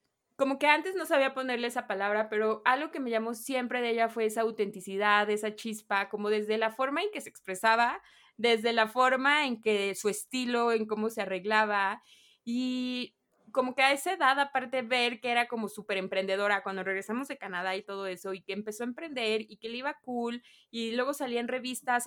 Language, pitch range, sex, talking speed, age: Spanish, 210-255 Hz, female, 205 wpm, 20-39